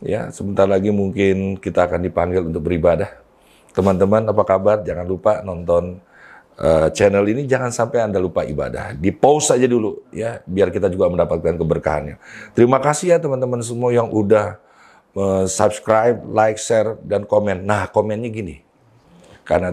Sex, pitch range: male, 85-105 Hz